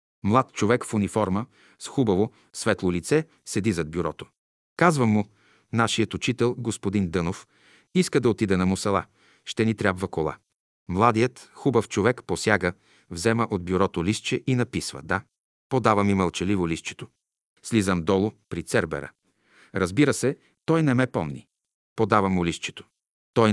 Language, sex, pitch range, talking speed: Bulgarian, male, 95-125 Hz, 140 wpm